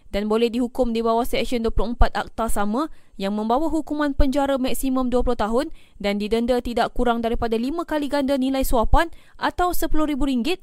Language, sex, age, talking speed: Malay, female, 20-39, 160 wpm